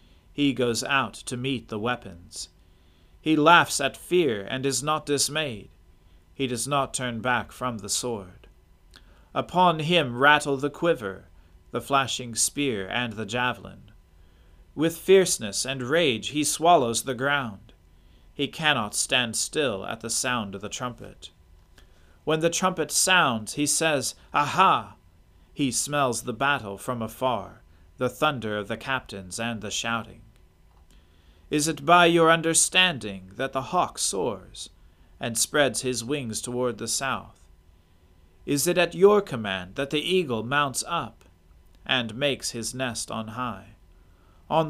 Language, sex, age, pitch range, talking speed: English, male, 40-59, 95-140 Hz, 140 wpm